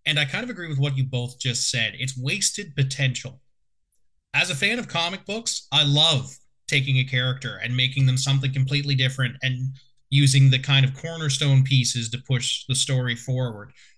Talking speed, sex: 185 wpm, male